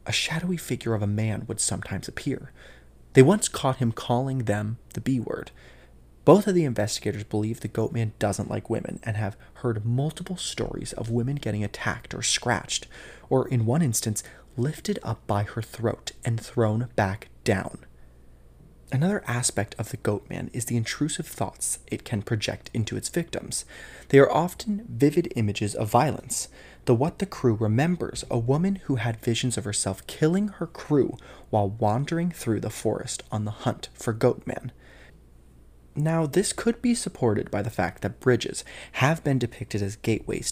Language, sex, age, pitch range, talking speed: English, male, 20-39, 105-135 Hz, 165 wpm